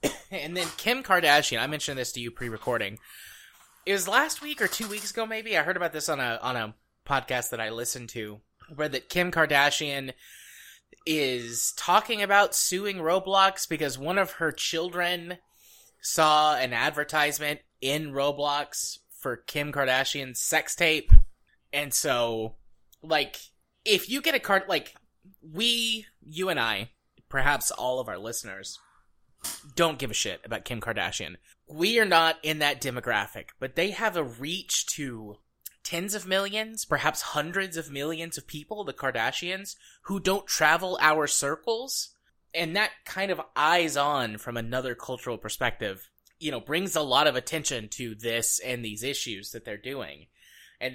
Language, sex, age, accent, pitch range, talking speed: English, male, 20-39, American, 125-180 Hz, 160 wpm